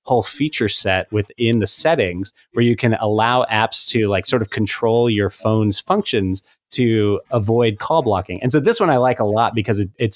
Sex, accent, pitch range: male, American, 100-120 Hz